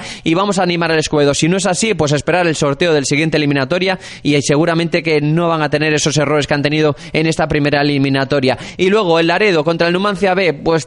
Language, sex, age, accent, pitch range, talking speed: Spanish, male, 20-39, Spanish, 150-180 Hz, 230 wpm